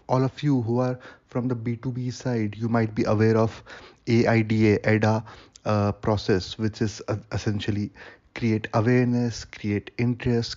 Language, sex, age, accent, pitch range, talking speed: English, male, 30-49, Indian, 110-125 Hz, 135 wpm